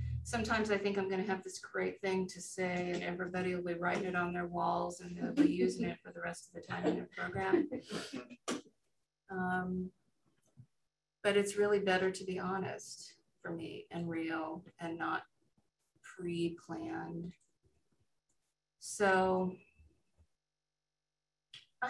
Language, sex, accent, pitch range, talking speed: English, female, American, 170-190 Hz, 140 wpm